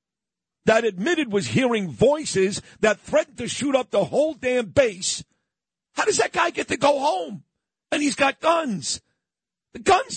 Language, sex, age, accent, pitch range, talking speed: English, male, 50-69, American, 170-280 Hz, 165 wpm